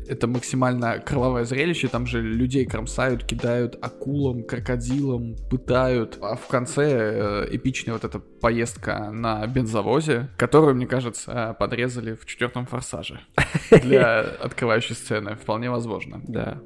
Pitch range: 110-130 Hz